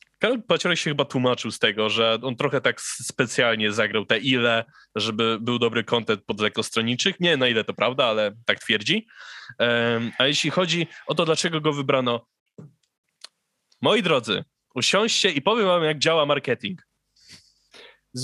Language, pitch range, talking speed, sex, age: Polish, 115-150 Hz, 155 wpm, male, 20-39